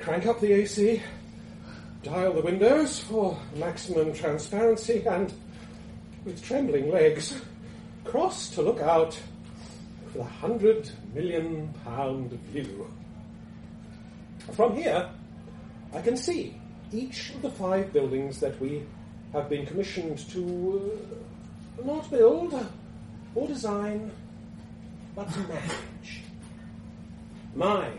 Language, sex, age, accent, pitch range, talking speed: English, male, 40-59, British, 145-220 Hz, 105 wpm